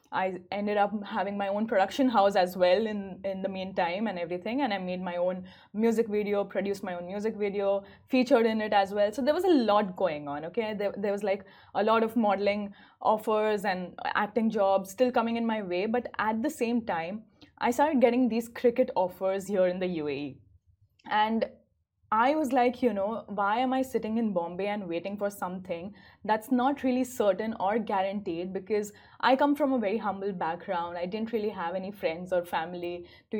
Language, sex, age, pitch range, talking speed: Arabic, female, 20-39, 190-230 Hz, 200 wpm